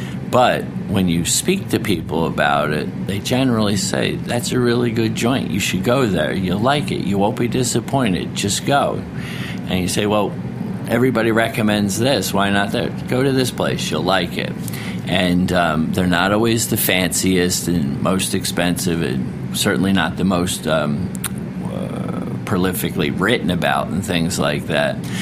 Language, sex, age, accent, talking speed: English, male, 50-69, American, 165 wpm